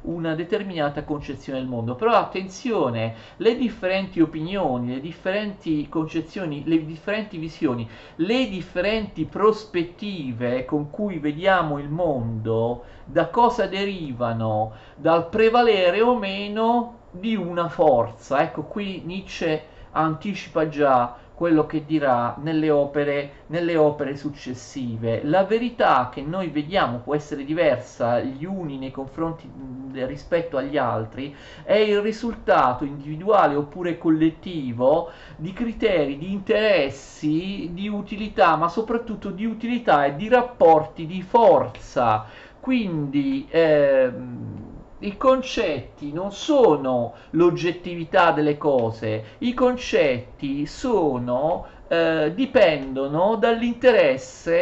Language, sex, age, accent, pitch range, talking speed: Italian, male, 40-59, native, 140-200 Hz, 110 wpm